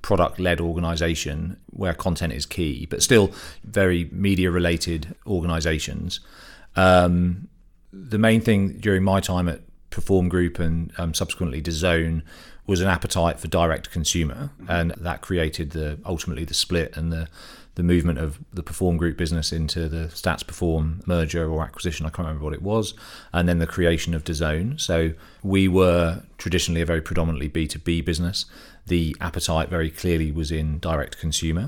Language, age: English, 40-59